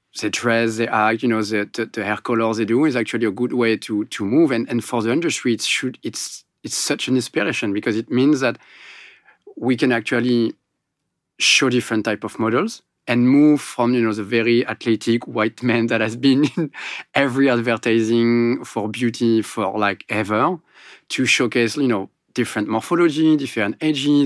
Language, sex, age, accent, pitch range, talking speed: English, male, 40-59, French, 110-125 Hz, 185 wpm